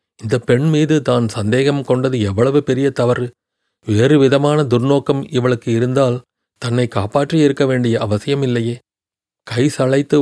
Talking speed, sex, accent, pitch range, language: 115 wpm, male, native, 115-140 Hz, Tamil